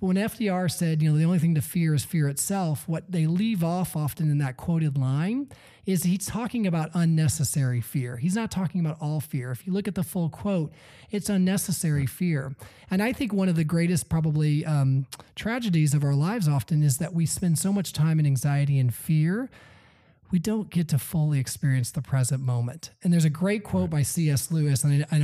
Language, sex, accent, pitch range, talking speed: English, male, American, 140-180 Hz, 210 wpm